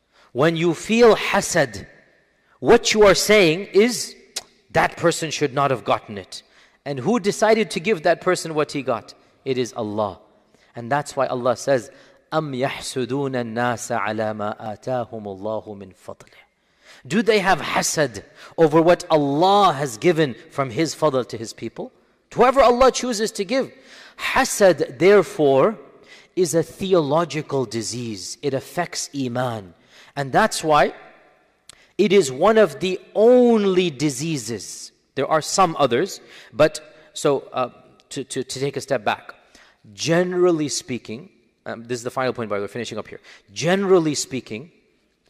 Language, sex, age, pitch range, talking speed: English, male, 40-59, 125-180 Hz, 140 wpm